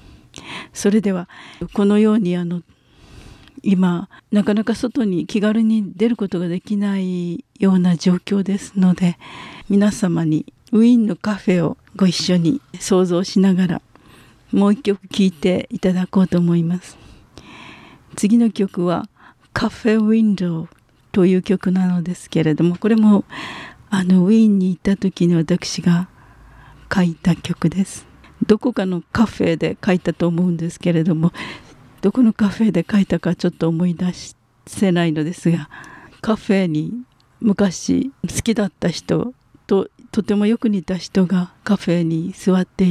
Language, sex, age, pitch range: Japanese, female, 50-69, 175-205 Hz